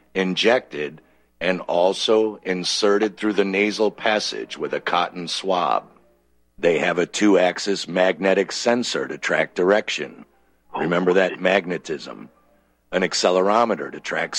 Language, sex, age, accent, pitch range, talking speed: English, male, 50-69, American, 85-110 Hz, 115 wpm